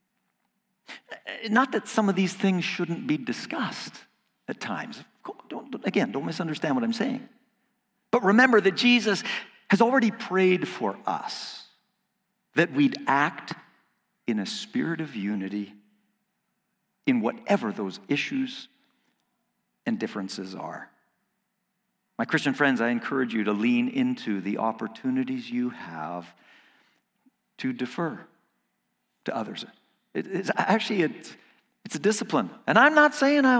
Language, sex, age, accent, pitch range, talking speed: English, male, 50-69, American, 155-245 Hz, 125 wpm